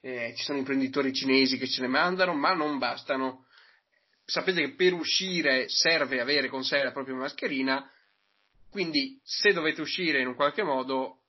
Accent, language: native, Italian